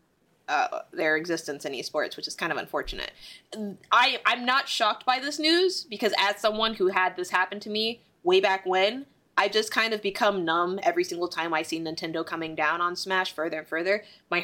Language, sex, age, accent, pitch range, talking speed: English, female, 20-39, American, 170-215 Hz, 205 wpm